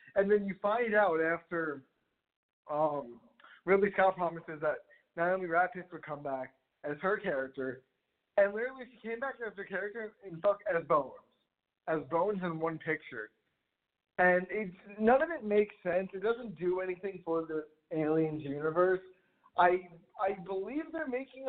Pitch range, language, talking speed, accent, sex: 150-205 Hz, English, 155 wpm, American, male